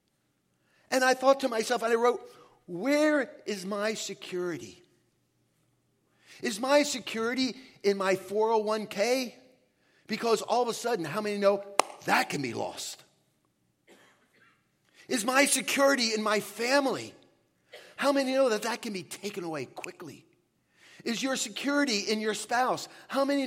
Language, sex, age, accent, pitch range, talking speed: English, male, 40-59, American, 185-260 Hz, 140 wpm